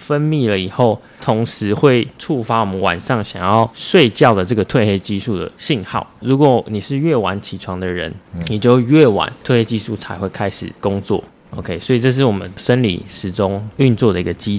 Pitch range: 100-125 Hz